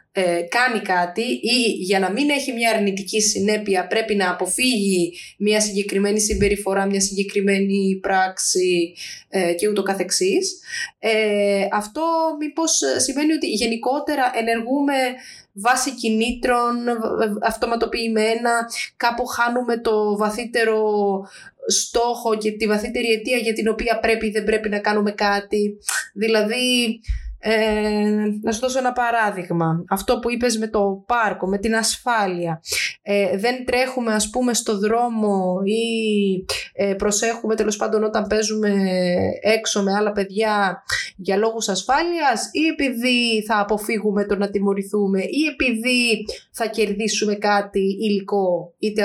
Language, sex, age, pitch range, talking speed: Greek, female, 20-39, 195-235 Hz, 125 wpm